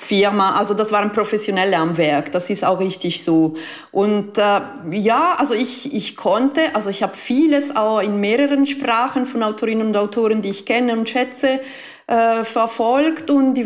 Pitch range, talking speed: 205-255 Hz, 175 wpm